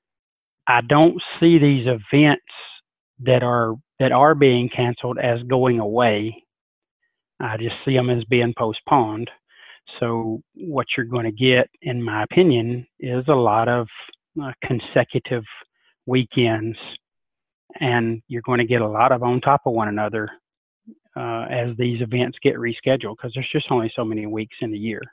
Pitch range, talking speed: 115-130 Hz, 160 wpm